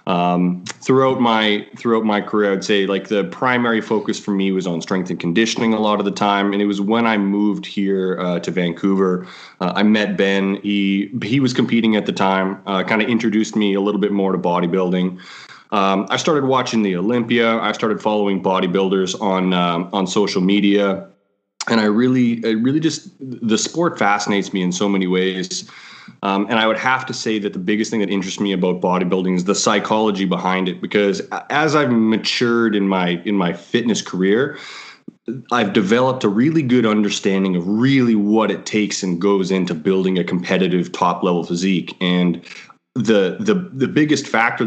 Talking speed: 190 wpm